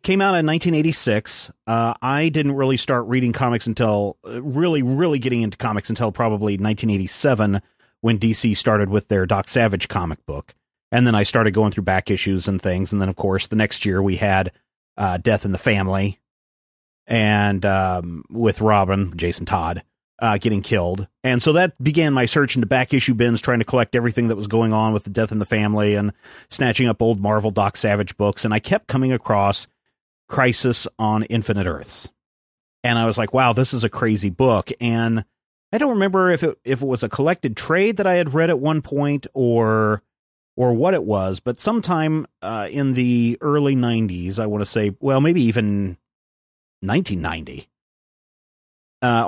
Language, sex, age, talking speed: English, male, 30-49, 185 wpm